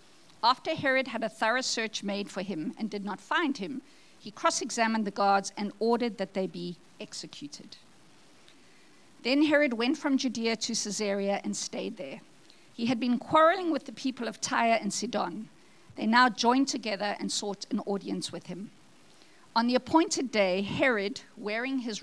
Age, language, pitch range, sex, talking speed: 50-69, English, 205-265 Hz, female, 170 wpm